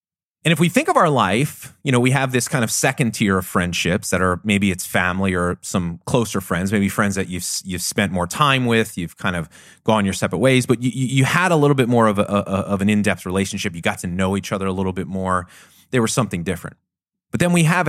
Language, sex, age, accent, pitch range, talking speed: English, male, 30-49, American, 95-130 Hz, 250 wpm